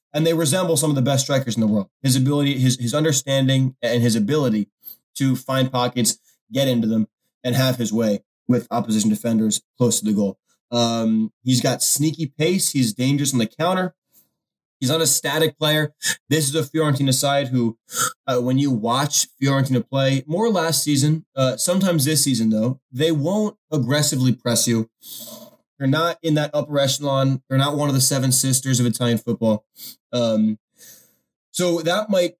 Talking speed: 180 wpm